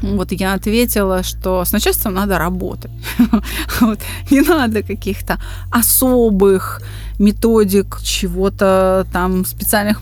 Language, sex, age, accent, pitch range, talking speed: Russian, female, 20-39, native, 175-220 Hz, 95 wpm